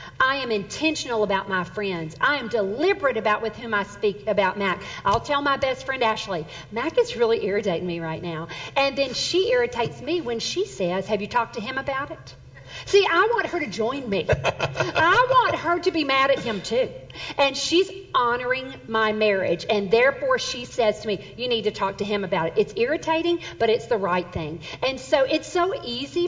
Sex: female